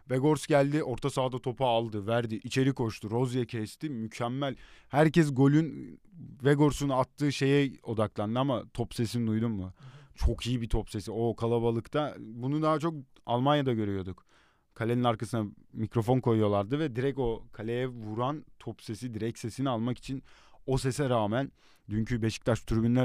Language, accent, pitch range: Turkish, native, 115-135 Hz